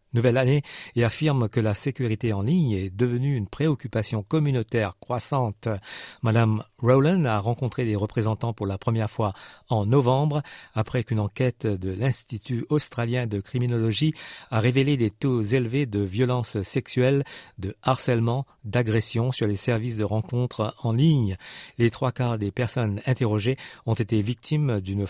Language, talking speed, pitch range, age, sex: French, 150 wpm, 110-135 Hz, 50-69, male